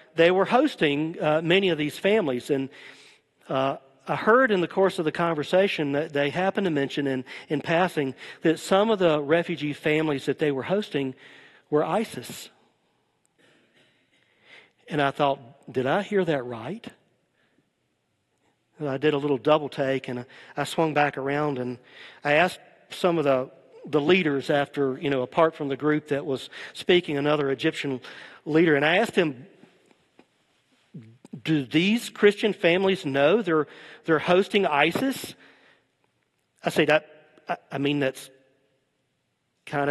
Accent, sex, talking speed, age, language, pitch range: American, male, 150 wpm, 50-69, English, 135-170 Hz